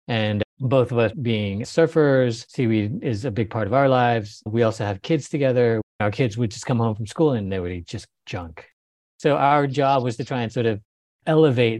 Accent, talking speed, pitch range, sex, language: American, 220 wpm, 110-140 Hz, male, English